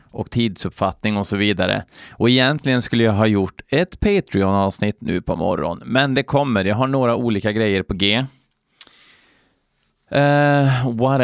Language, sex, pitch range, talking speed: Swedish, male, 100-125 Hz, 150 wpm